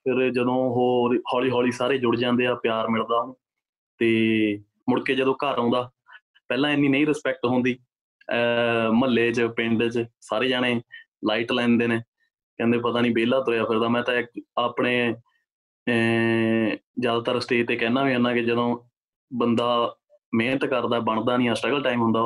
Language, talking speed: Punjabi, 160 wpm